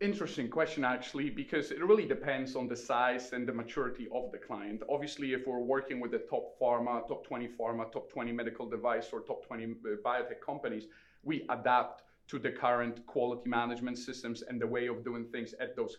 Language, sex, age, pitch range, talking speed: English, male, 30-49, 120-140 Hz, 195 wpm